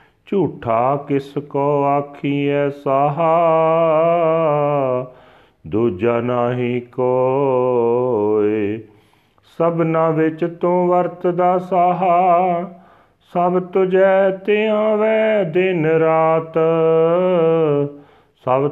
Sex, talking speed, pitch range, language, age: male, 65 wpm, 125-180 Hz, Punjabi, 40-59